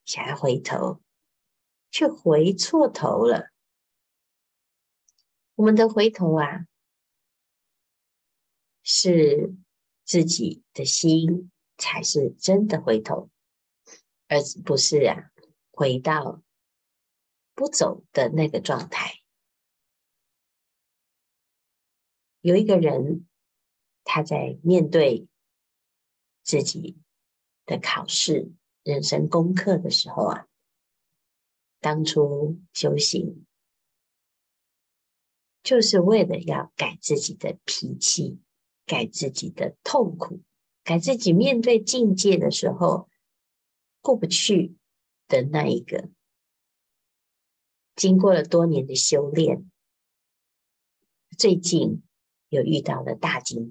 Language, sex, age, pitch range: Chinese, female, 50-69, 125-185 Hz